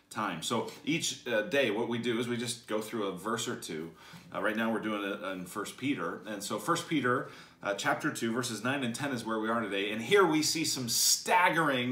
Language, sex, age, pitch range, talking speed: English, male, 40-59, 115-160 Hz, 240 wpm